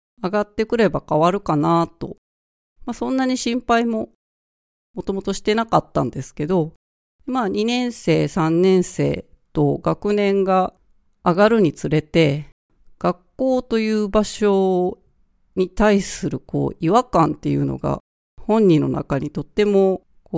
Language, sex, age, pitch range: Japanese, female, 40-59, 160-220 Hz